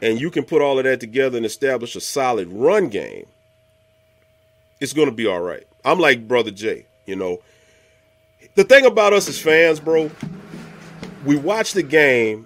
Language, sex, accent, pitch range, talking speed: English, male, American, 110-165 Hz, 180 wpm